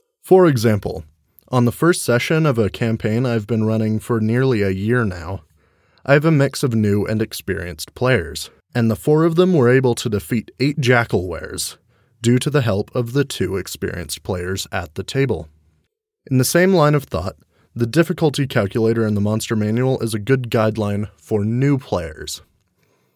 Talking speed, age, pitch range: 180 wpm, 20-39, 100-130 Hz